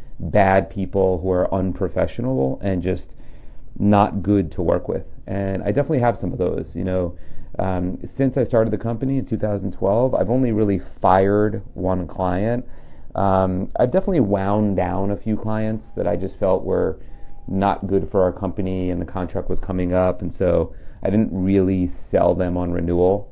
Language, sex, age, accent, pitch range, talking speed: English, male, 30-49, American, 90-100 Hz, 185 wpm